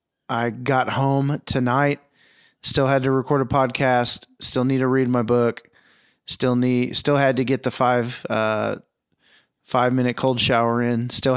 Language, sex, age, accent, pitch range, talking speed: English, male, 20-39, American, 110-135 Hz, 165 wpm